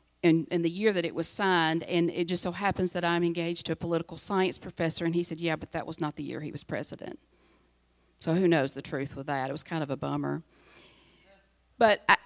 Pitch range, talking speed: 155-180 Hz, 240 wpm